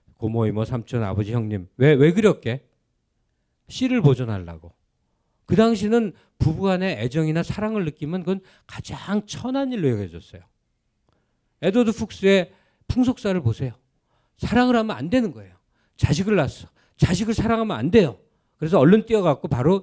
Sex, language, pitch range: male, Korean, 120-190 Hz